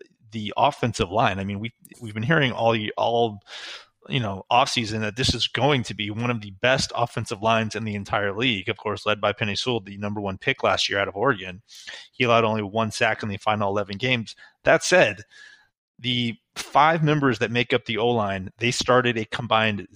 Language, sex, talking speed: English, male, 215 wpm